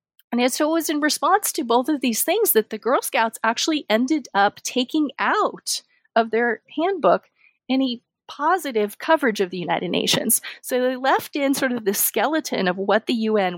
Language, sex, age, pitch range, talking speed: English, female, 30-49, 205-265 Hz, 185 wpm